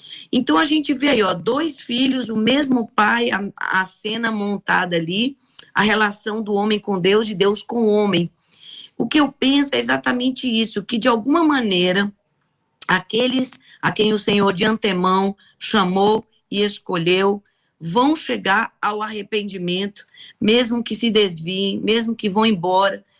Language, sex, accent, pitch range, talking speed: Portuguese, female, Brazilian, 185-230 Hz, 155 wpm